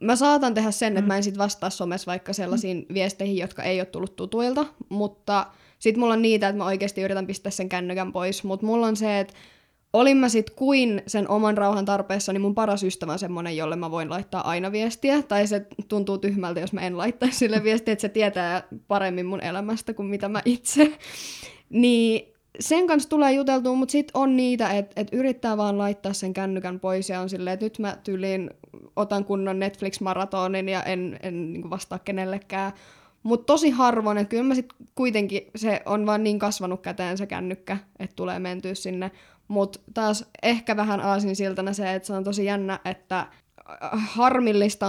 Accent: native